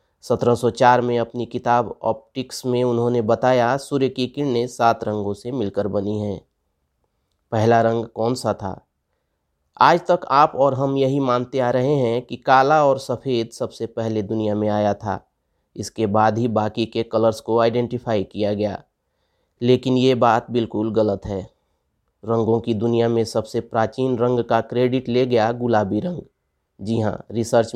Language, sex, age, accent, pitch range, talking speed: Hindi, male, 30-49, native, 110-125 Hz, 165 wpm